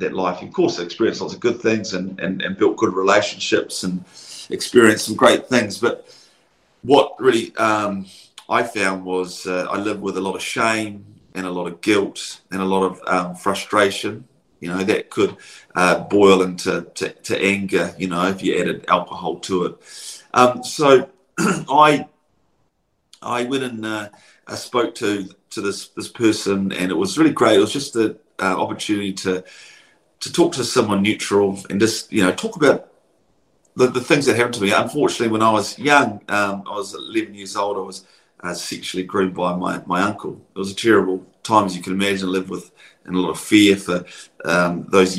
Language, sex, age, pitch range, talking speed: English, male, 40-59, 95-110 Hz, 195 wpm